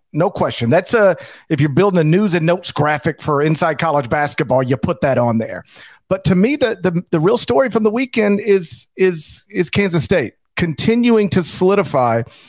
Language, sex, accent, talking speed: English, male, American, 190 wpm